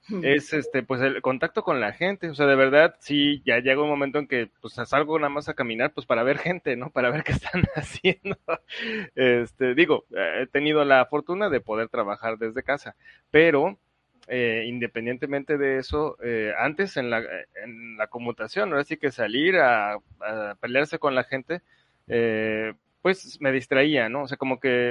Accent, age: Mexican, 30-49